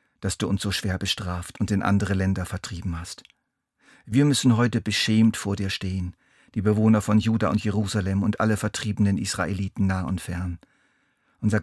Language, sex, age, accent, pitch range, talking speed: German, male, 50-69, German, 95-115 Hz, 170 wpm